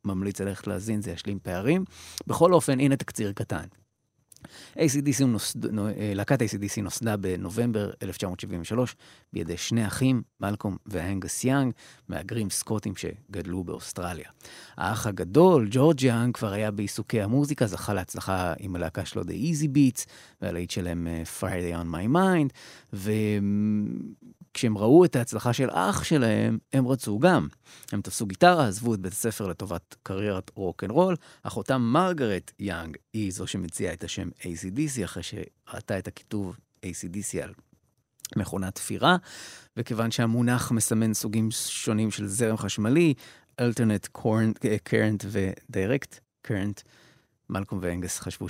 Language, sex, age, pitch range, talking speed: Hebrew, male, 30-49, 95-120 Hz, 130 wpm